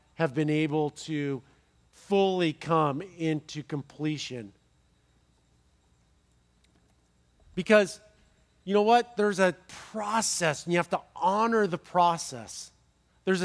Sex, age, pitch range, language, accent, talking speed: male, 40-59, 130-195 Hz, English, American, 105 wpm